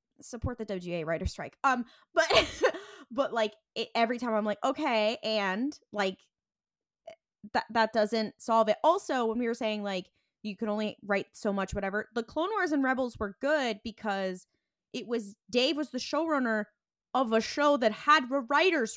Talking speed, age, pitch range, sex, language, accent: 175 wpm, 20-39, 210-280 Hz, female, English, American